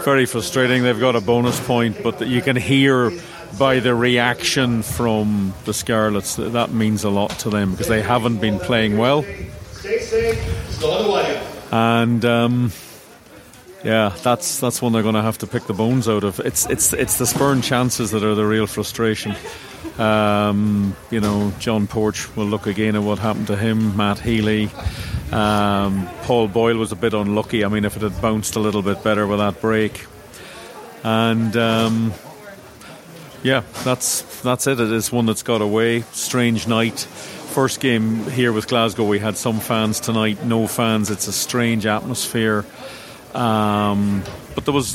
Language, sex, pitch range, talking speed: English, male, 105-120 Hz, 170 wpm